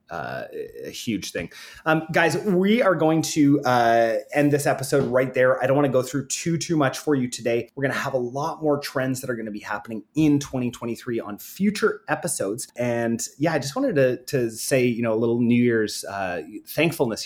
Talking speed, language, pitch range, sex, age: 220 wpm, English, 105-145 Hz, male, 30-49